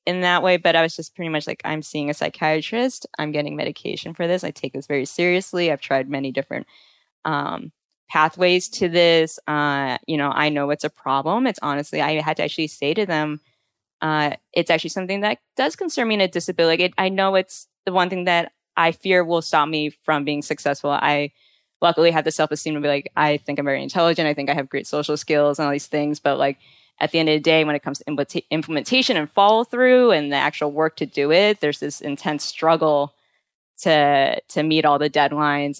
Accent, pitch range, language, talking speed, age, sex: American, 145-170 Hz, English, 225 wpm, 10-29, female